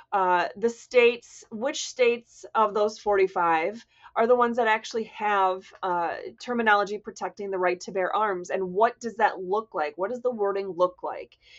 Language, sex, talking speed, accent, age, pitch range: English, female, 175 wpm, American, 30-49, 195-275 Hz